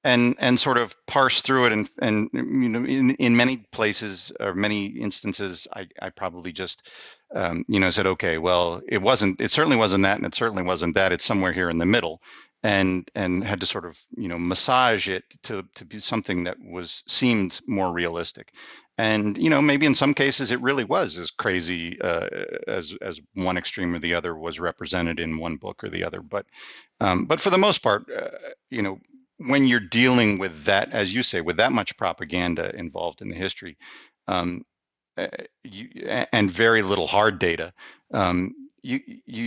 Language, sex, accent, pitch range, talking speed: English, male, American, 90-125 Hz, 195 wpm